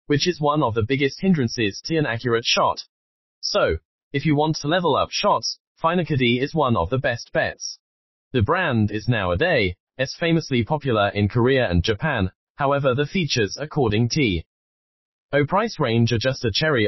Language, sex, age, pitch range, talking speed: English, male, 20-39, 105-150 Hz, 175 wpm